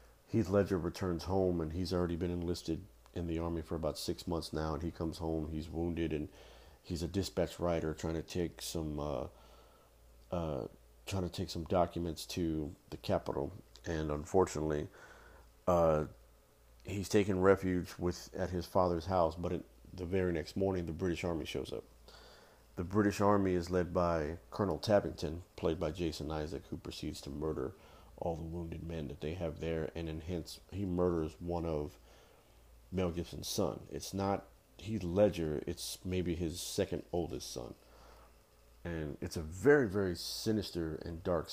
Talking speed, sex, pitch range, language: 170 wpm, male, 80-90 Hz, English